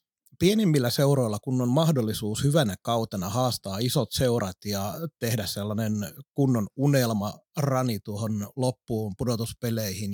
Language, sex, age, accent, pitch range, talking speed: Finnish, male, 30-49, native, 110-140 Hz, 105 wpm